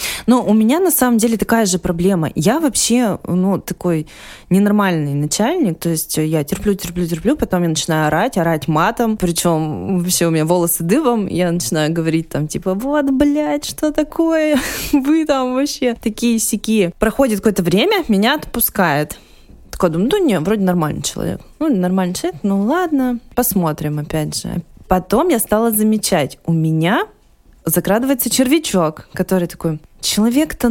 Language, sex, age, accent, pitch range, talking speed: Russian, female, 20-39, native, 165-235 Hz, 155 wpm